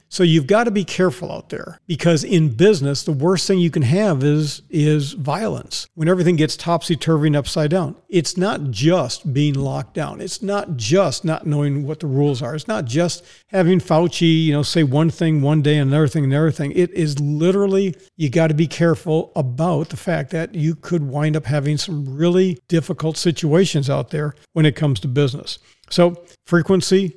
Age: 50-69